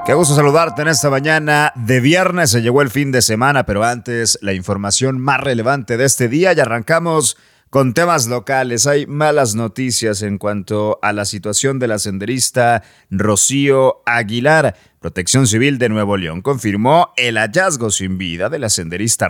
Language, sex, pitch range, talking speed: Spanish, male, 100-130 Hz, 170 wpm